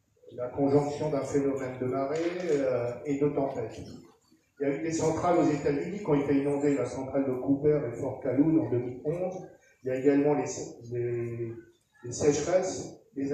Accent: French